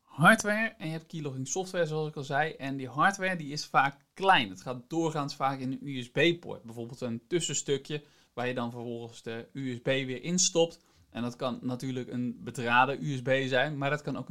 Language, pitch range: Dutch, 130-175 Hz